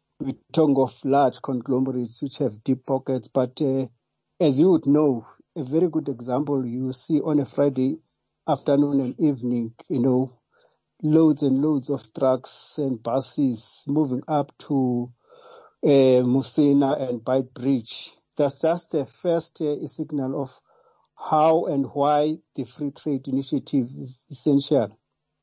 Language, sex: English, male